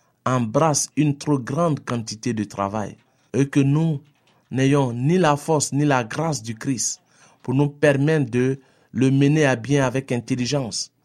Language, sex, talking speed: French, male, 160 wpm